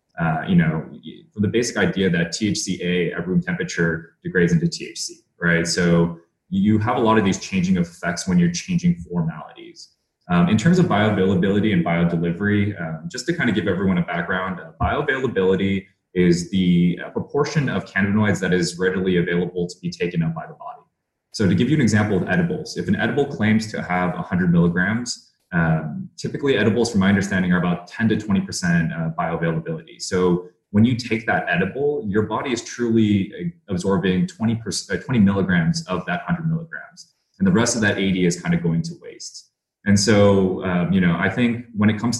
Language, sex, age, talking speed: English, male, 20-39, 190 wpm